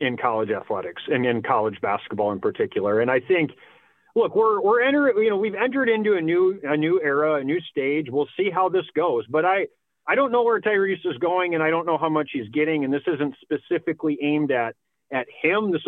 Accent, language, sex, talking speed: American, English, male, 225 wpm